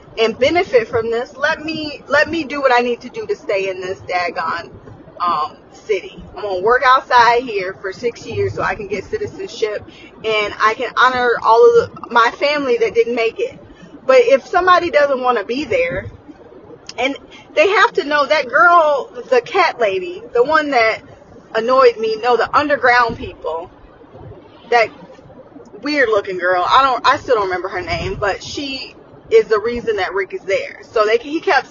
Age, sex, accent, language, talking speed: 20-39, female, American, English, 185 wpm